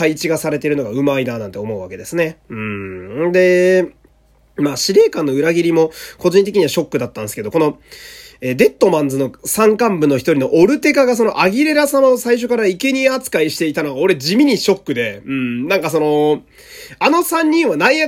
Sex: male